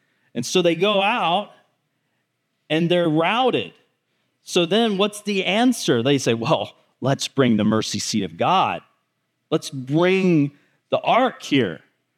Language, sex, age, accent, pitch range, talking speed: English, male, 40-59, American, 140-195 Hz, 140 wpm